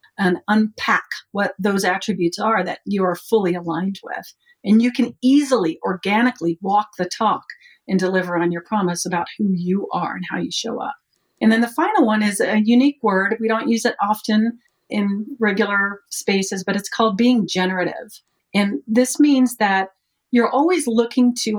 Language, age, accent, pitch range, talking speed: English, 40-59, American, 190-240 Hz, 180 wpm